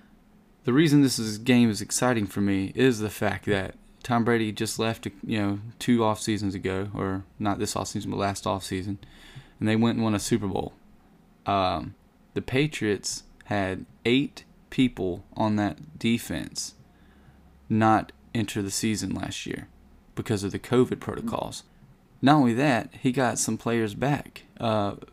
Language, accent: English, American